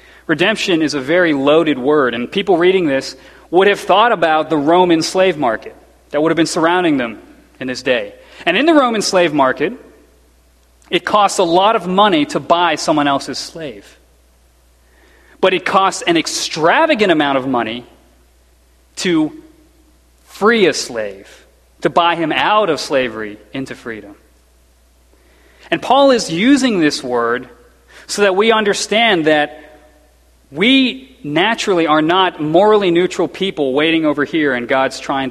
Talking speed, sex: 150 wpm, male